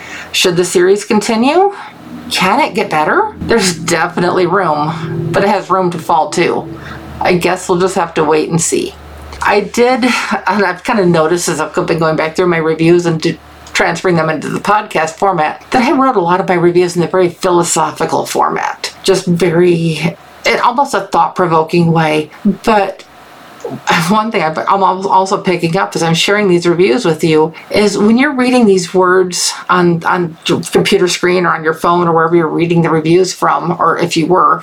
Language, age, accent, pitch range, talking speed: English, 50-69, American, 170-200 Hz, 190 wpm